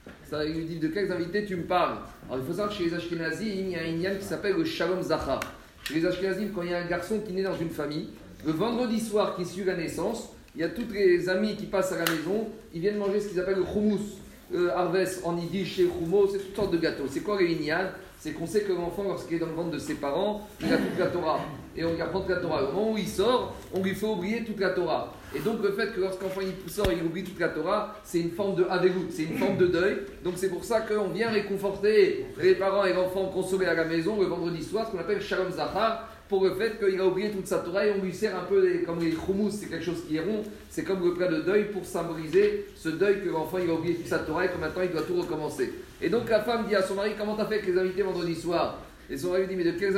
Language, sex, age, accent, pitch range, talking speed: French, male, 40-59, French, 170-205 Hz, 285 wpm